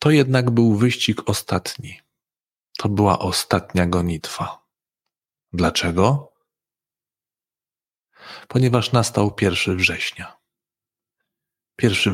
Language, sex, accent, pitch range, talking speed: Polish, male, native, 95-120 Hz, 75 wpm